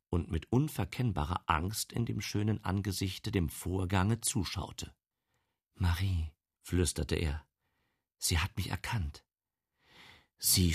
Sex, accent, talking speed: male, German, 105 wpm